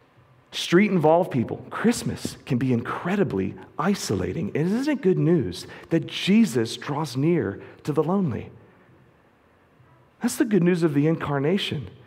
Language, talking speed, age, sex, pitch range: English, 125 wpm, 40-59, male, 120-180 Hz